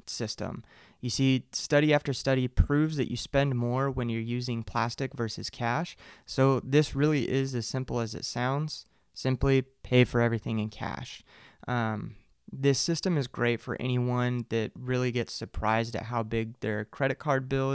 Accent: American